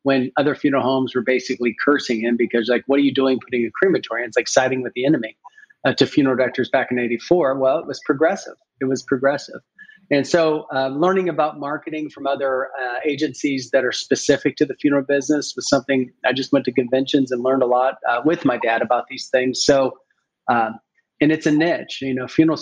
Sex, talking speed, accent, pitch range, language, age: male, 215 wpm, American, 130-155 Hz, English, 40-59